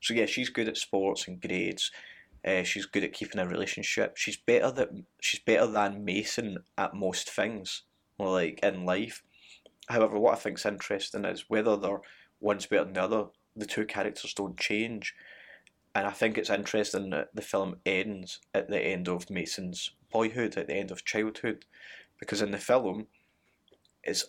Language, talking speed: English, 175 wpm